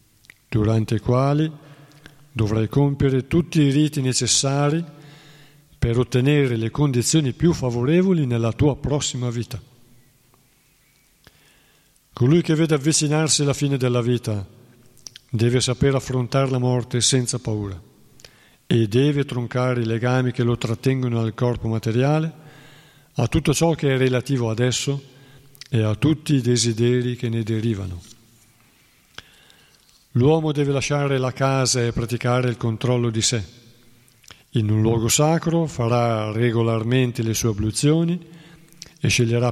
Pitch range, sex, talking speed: 115-145 Hz, male, 125 wpm